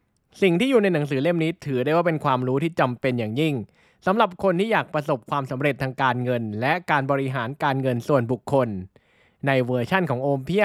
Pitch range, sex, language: 130-180 Hz, male, Thai